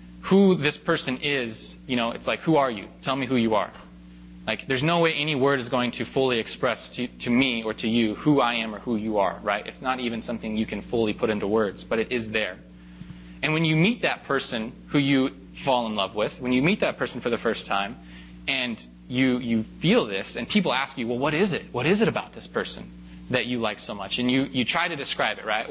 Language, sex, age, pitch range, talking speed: English, male, 20-39, 100-145 Hz, 250 wpm